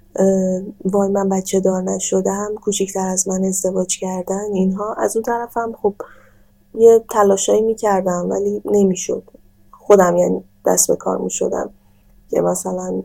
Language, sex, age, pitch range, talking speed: Persian, female, 10-29, 180-205 Hz, 150 wpm